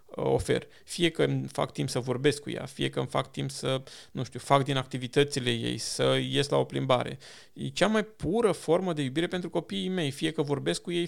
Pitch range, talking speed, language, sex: 140-165 Hz, 225 wpm, Romanian, male